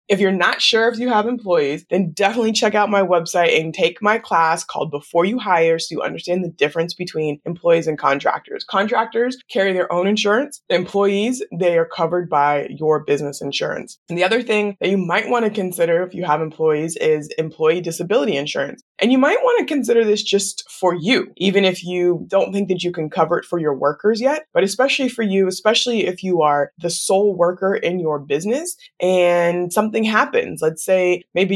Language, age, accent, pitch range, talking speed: English, 20-39, American, 165-210 Hz, 200 wpm